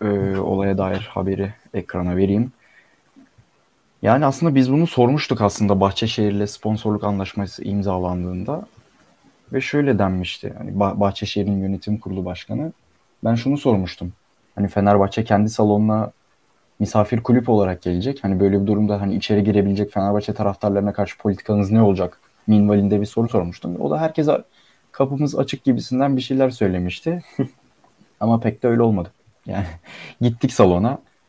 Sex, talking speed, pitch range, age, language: male, 130 wpm, 100-115 Hz, 20-39, Turkish